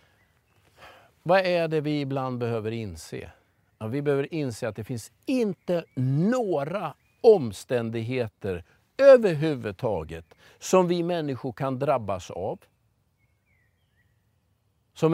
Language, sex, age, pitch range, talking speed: Swedish, male, 50-69, 110-160 Hz, 100 wpm